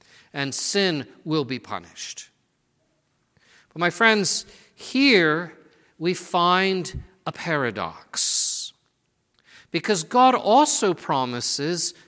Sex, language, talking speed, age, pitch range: male, English, 85 wpm, 50-69, 140-205 Hz